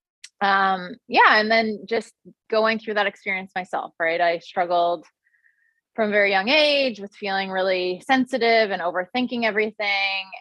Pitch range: 175-215 Hz